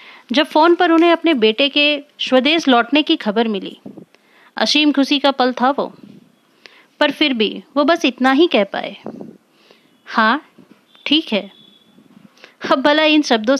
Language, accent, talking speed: Hindi, native, 140 wpm